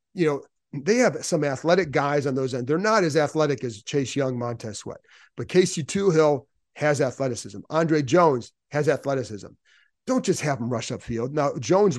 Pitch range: 130-160 Hz